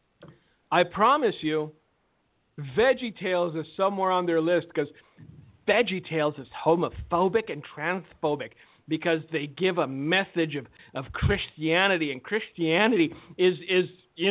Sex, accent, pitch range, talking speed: male, American, 165-250 Hz, 125 wpm